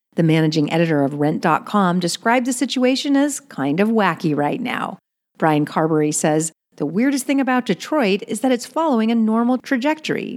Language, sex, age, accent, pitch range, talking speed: English, female, 50-69, American, 165-255 Hz, 170 wpm